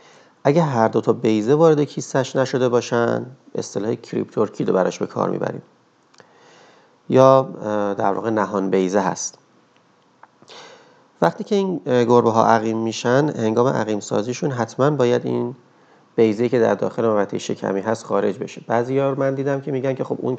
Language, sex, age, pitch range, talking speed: Persian, male, 40-59, 105-130 Hz, 155 wpm